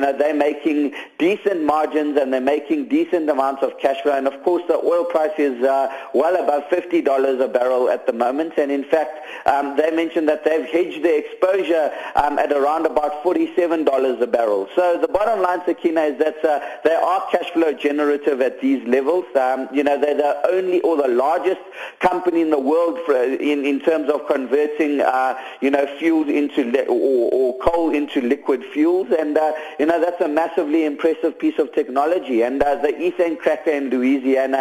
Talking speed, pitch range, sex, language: 200 wpm, 140-165 Hz, male, English